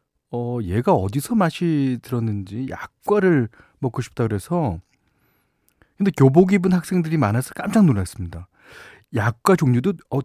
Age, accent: 40-59, native